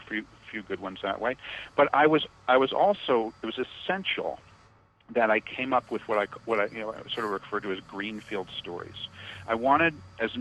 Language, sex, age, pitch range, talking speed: English, male, 50-69, 100-130 Hz, 225 wpm